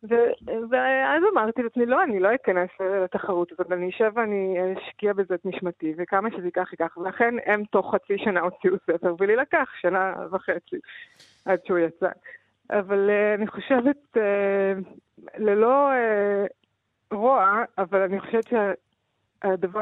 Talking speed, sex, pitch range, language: 140 wpm, female, 185-230 Hz, Hebrew